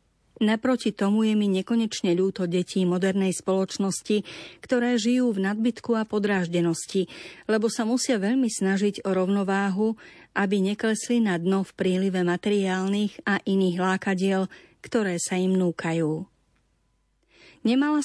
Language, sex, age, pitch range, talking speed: Slovak, female, 40-59, 185-220 Hz, 125 wpm